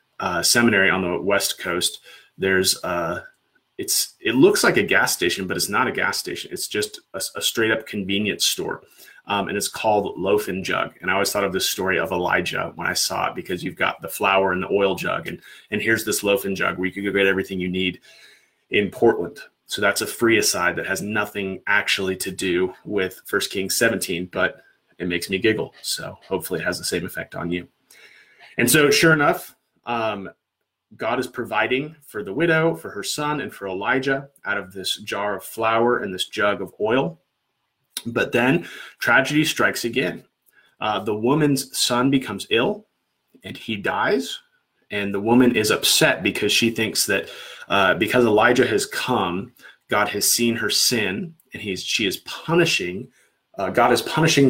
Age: 30-49